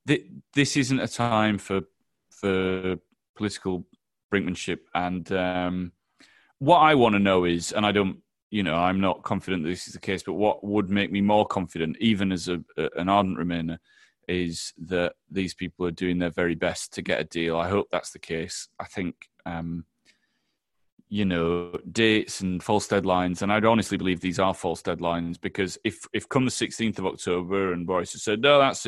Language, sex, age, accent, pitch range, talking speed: English, male, 30-49, British, 90-105 Hz, 190 wpm